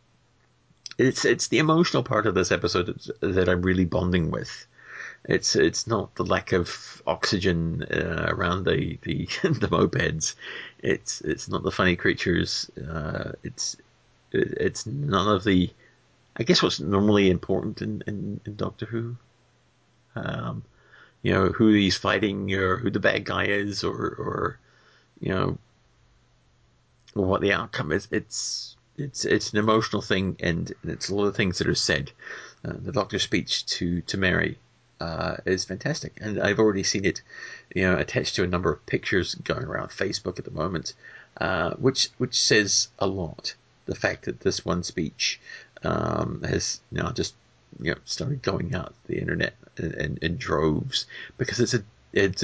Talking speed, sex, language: 165 wpm, male, English